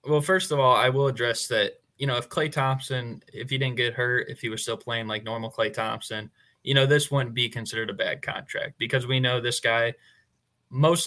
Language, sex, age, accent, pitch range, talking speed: English, male, 20-39, American, 115-135 Hz, 230 wpm